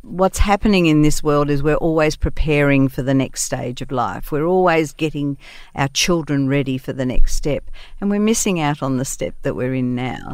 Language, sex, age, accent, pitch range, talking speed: English, female, 50-69, Australian, 140-155 Hz, 210 wpm